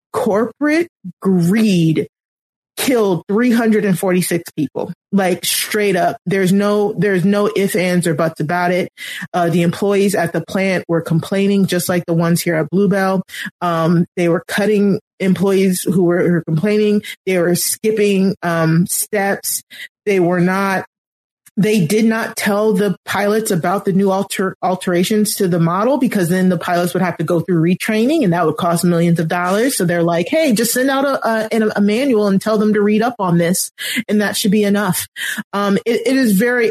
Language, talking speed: English, 180 wpm